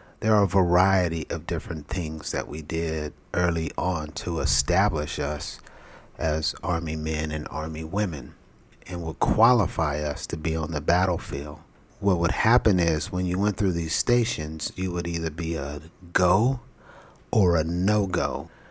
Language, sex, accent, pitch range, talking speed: English, male, American, 80-100 Hz, 155 wpm